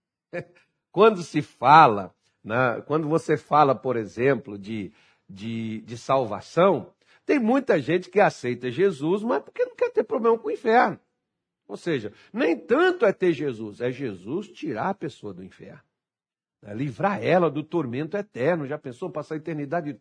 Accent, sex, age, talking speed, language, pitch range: Brazilian, male, 60-79, 160 wpm, Portuguese, 130-205 Hz